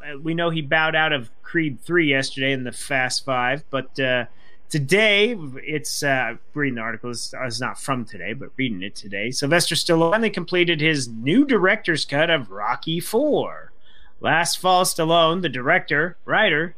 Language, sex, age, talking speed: English, male, 30-49, 160 wpm